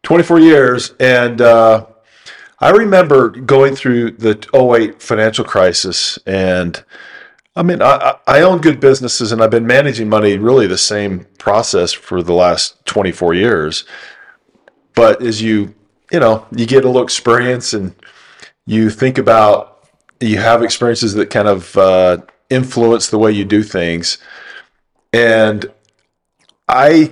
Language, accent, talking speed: English, American, 140 wpm